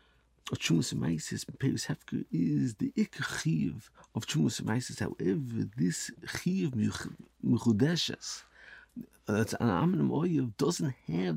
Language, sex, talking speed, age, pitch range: English, male, 105 wpm, 50-69, 105-140 Hz